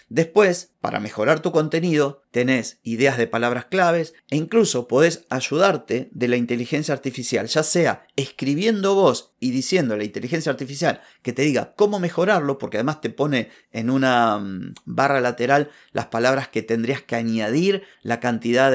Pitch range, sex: 120-145 Hz, male